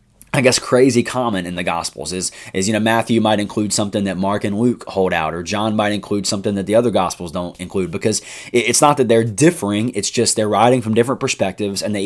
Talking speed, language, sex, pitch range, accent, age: 235 wpm, English, male, 95-120 Hz, American, 20-39